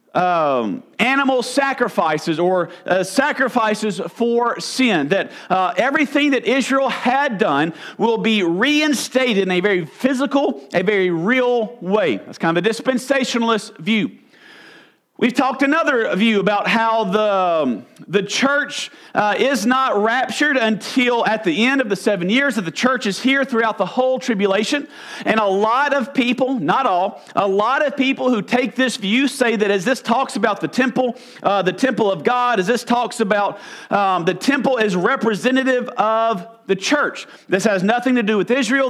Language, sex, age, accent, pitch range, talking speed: English, male, 50-69, American, 205-260 Hz, 170 wpm